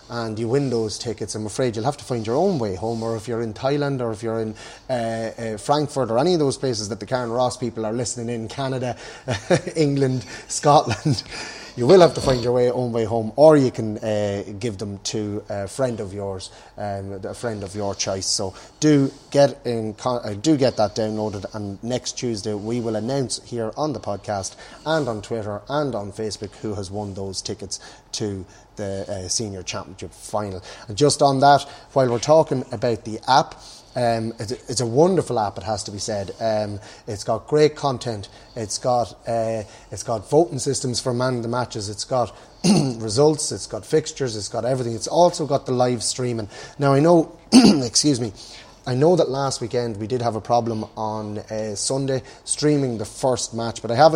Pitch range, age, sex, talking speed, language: 105-130 Hz, 30-49, male, 205 wpm, English